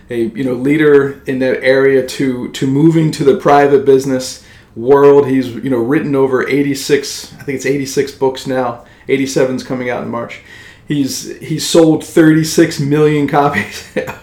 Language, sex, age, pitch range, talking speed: English, male, 40-59, 125-155 Hz, 175 wpm